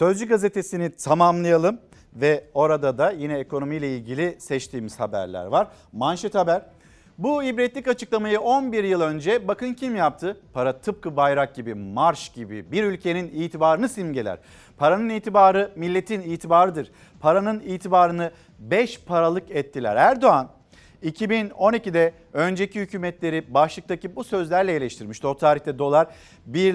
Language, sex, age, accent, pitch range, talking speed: Turkish, male, 50-69, native, 140-185 Hz, 120 wpm